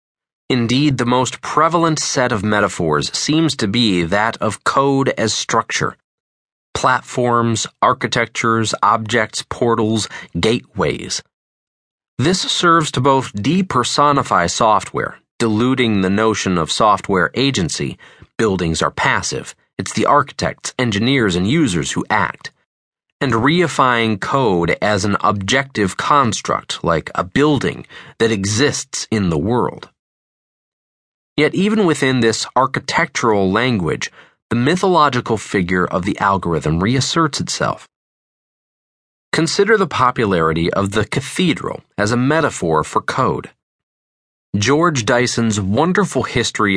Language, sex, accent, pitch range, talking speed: English, male, American, 105-140 Hz, 110 wpm